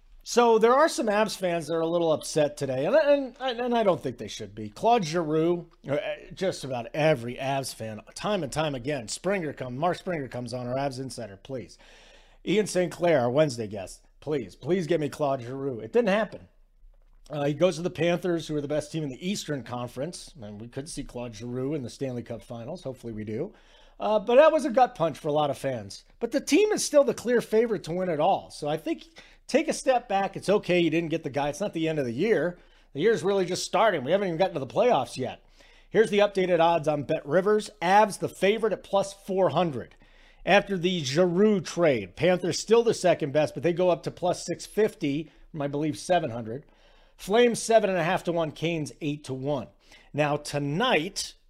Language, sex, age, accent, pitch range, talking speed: English, male, 40-59, American, 140-195 Hz, 225 wpm